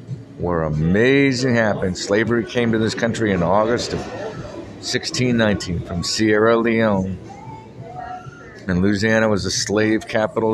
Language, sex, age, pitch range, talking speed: English, male, 50-69, 95-120 Hz, 120 wpm